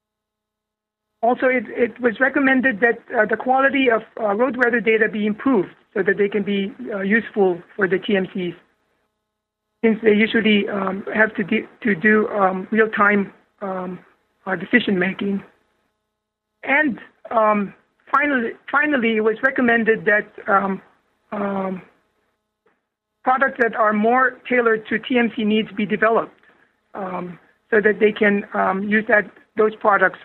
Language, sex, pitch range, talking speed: English, male, 195-235 Hz, 135 wpm